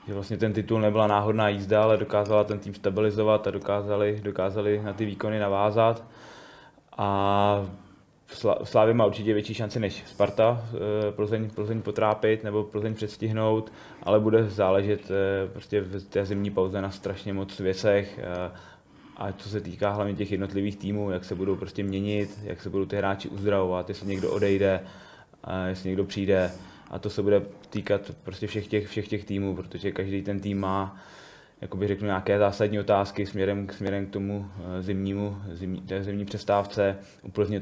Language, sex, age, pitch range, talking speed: Czech, male, 20-39, 95-105 Hz, 165 wpm